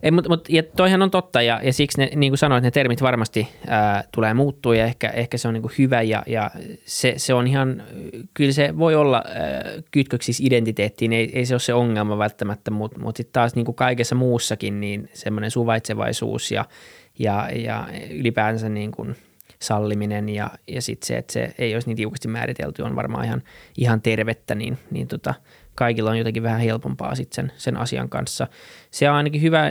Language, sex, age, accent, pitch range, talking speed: Finnish, male, 20-39, native, 110-130 Hz, 190 wpm